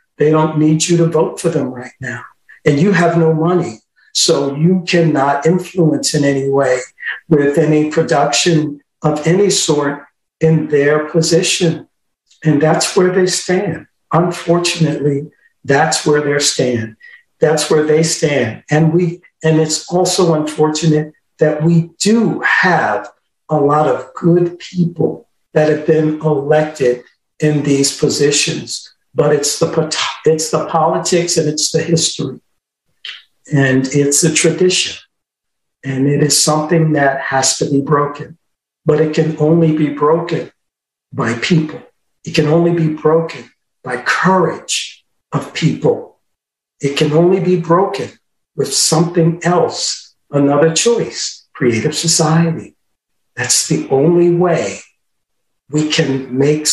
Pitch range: 145-165 Hz